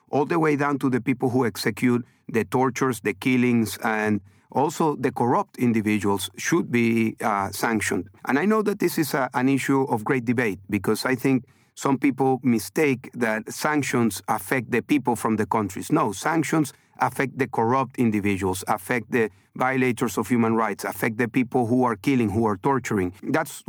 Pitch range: 115-135 Hz